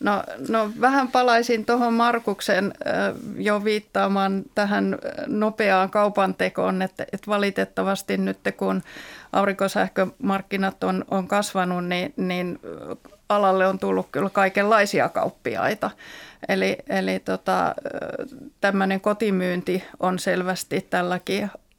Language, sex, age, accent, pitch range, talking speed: Finnish, female, 30-49, native, 180-205 Hz, 100 wpm